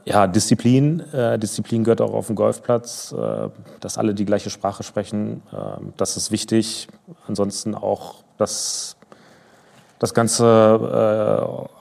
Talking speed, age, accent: 130 wpm, 30-49, German